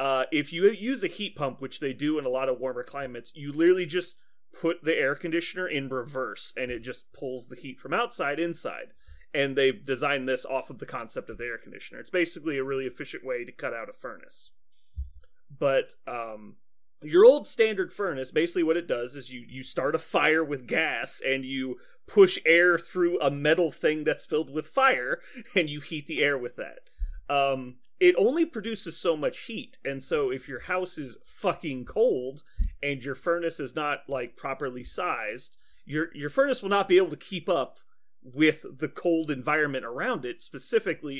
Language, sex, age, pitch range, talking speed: English, male, 30-49, 130-175 Hz, 195 wpm